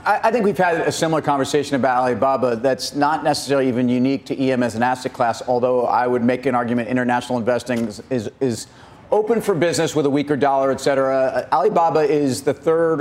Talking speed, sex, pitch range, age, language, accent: 195 wpm, male, 135-155 Hz, 40-59, English, American